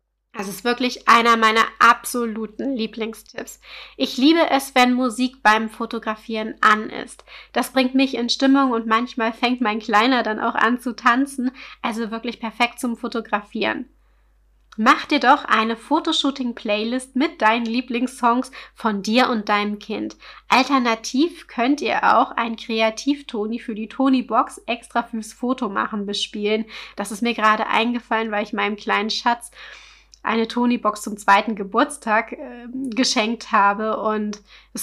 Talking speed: 145 wpm